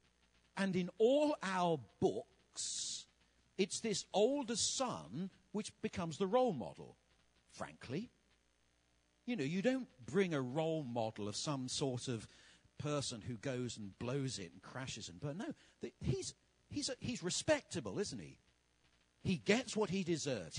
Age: 50-69